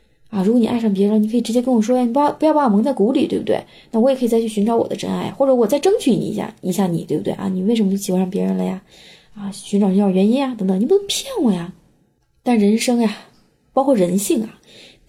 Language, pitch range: Chinese, 195-235 Hz